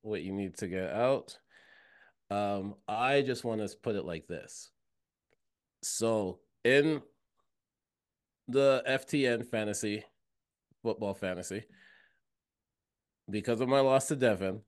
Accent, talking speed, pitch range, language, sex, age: American, 115 wpm, 100-135 Hz, English, male, 30-49